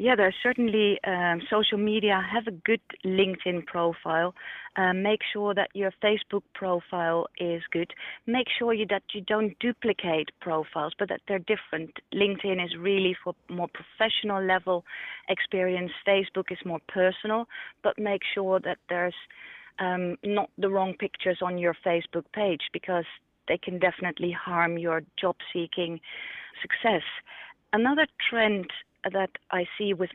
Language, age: English, 30-49